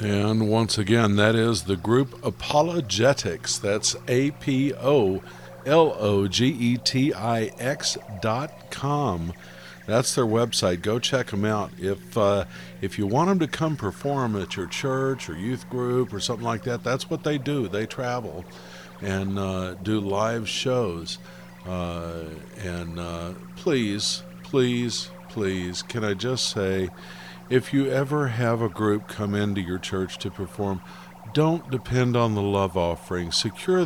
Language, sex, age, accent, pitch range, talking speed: English, male, 50-69, American, 90-125 Hz, 140 wpm